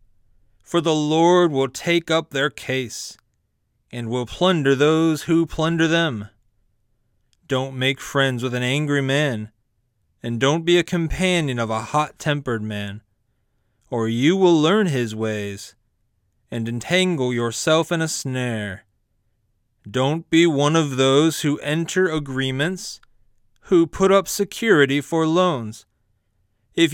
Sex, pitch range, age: male, 110-160 Hz, 30-49